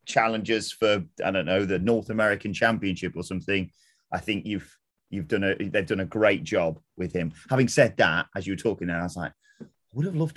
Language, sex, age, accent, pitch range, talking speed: English, male, 30-49, British, 95-130 Hz, 225 wpm